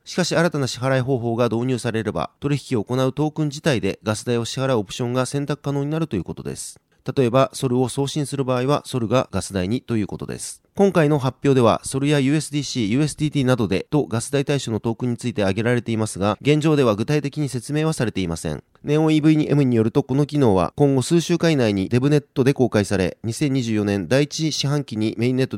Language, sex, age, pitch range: Japanese, male, 30-49, 115-145 Hz